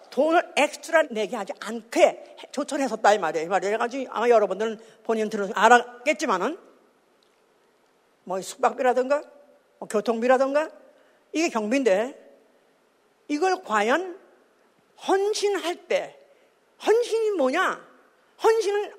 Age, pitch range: 40-59, 250-420 Hz